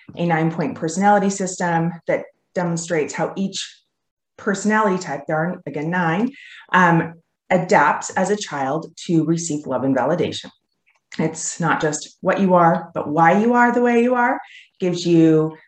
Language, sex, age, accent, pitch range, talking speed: English, female, 30-49, American, 155-195 Hz, 155 wpm